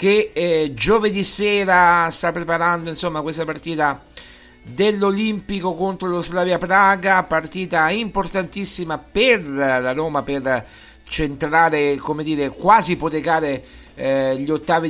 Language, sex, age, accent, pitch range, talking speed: Italian, male, 50-69, native, 125-175 Hz, 110 wpm